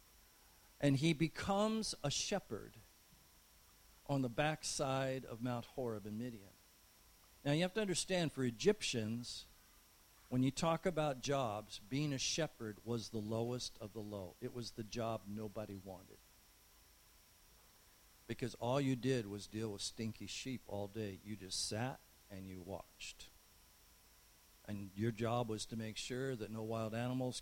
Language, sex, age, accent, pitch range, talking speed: English, male, 50-69, American, 105-155 Hz, 150 wpm